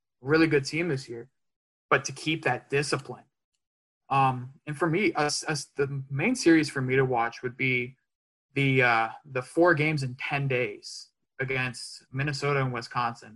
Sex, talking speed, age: male, 170 wpm, 20-39